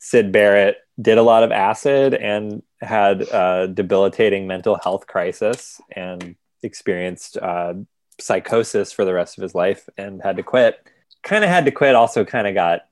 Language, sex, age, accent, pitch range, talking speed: English, male, 20-39, American, 90-125 Hz, 170 wpm